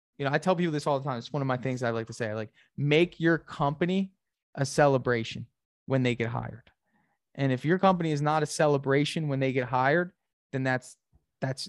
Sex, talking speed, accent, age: male, 225 wpm, American, 20-39